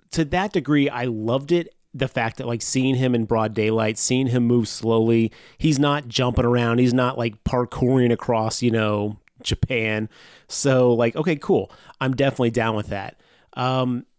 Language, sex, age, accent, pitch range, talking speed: English, male, 30-49, American, 110-135 Hz, 175 wpm